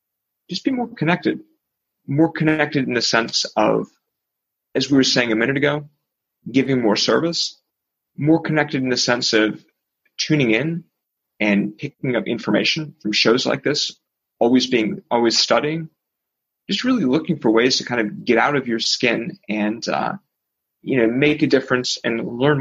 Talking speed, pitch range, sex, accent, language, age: 165 wpm, 115-165 Hz, male, American, English, 30-49